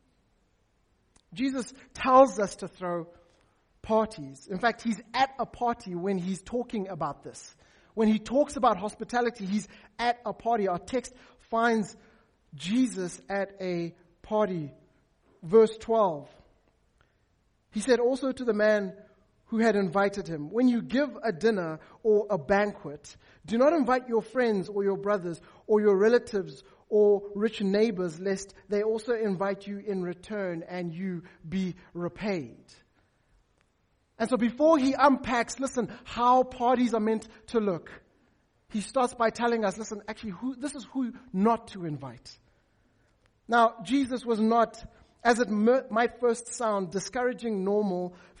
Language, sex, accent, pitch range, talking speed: English, male, South African, 185-235 Hz, 145 wpm